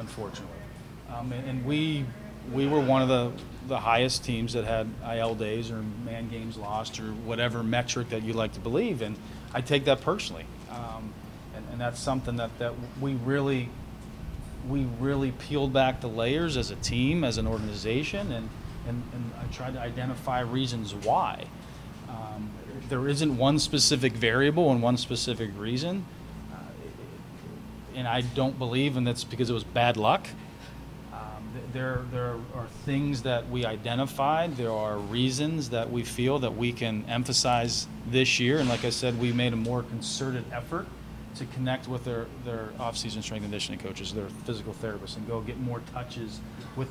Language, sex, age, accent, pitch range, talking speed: English, male, 40-59, American, 115-130 Hz, 175 wpm